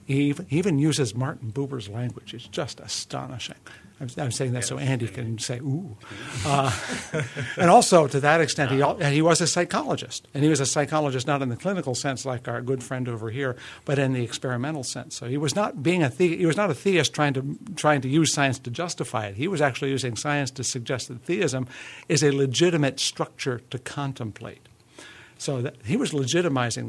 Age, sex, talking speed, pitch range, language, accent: 60-79, male, 200 wpm, 120-150 Hz, English, American